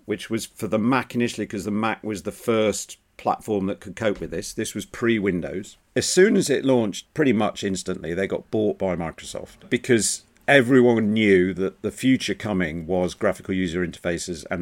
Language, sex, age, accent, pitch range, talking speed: English, male, 50-69, British, 90-110 Hz, 190 wpm